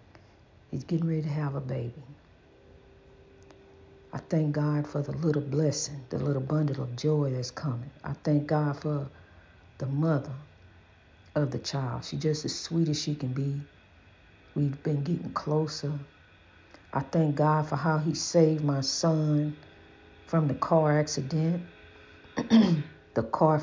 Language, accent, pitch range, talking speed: English, American, 105-170 Hz, 145 wpm